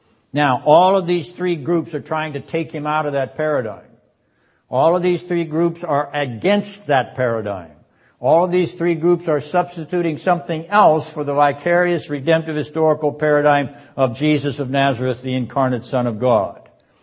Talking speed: 170 wpm